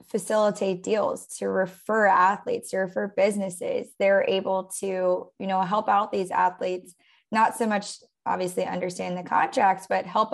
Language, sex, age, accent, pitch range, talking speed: English, female, 20-39, American, 180-210 Hz, 150 wpm